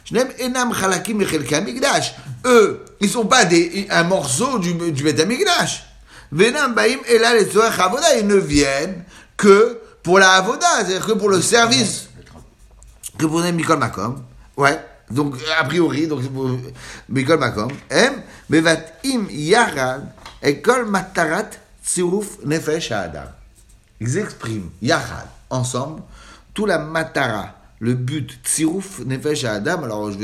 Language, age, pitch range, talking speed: French, 60-79, 120-185 Hz, 95 wpm